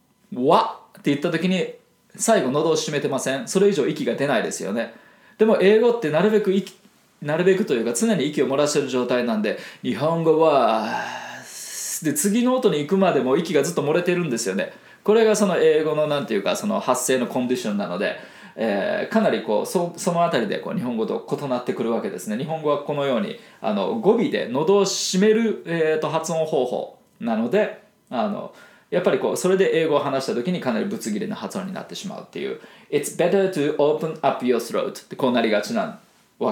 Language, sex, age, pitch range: Japanese, male, 20-39, 140-210 Hz